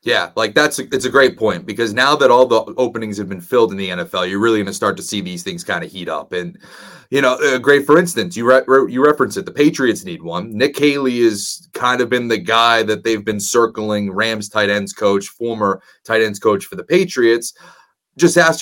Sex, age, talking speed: male, 30-49, 240 wpm